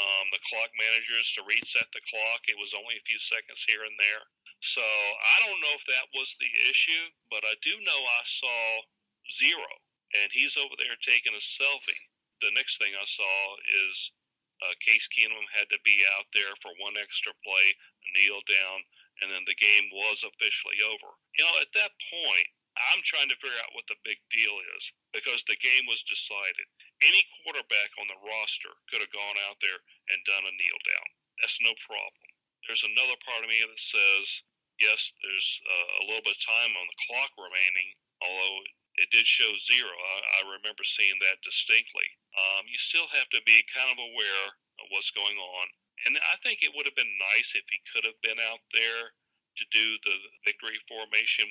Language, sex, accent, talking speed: English, male, American, 195 wpm